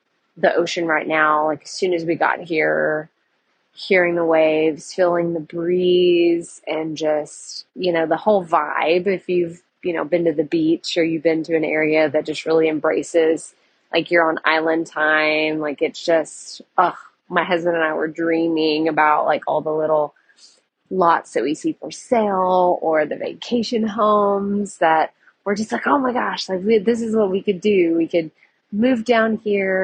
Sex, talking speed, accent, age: female, 185 wpm, American, 20-39